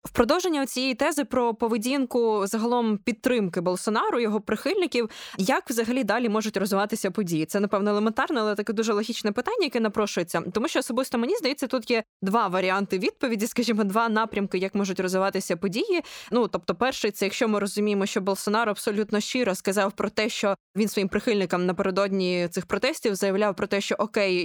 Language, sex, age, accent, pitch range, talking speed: Ukrainian, female, 20-39, native, 195-230 Hz, 170 wpm